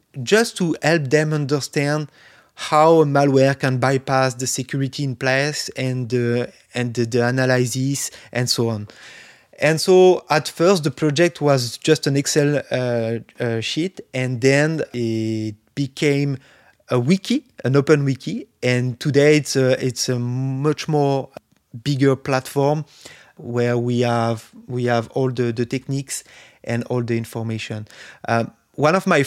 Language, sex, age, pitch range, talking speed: English, male, 20-39, 120-145 Hz, 150 wpm